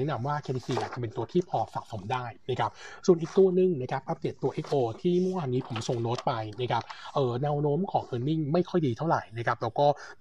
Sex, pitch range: male, 120-150 Hz